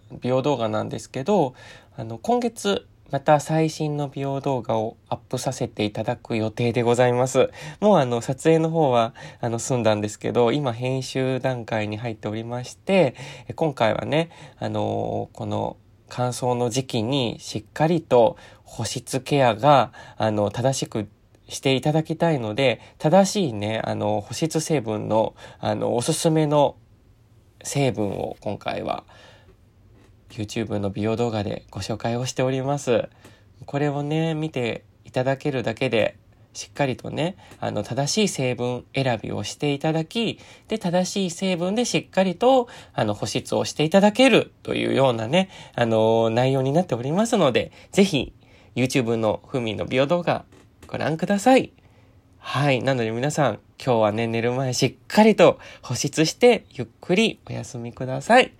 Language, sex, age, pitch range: Japanese, male, 20-39, 110-150 Hz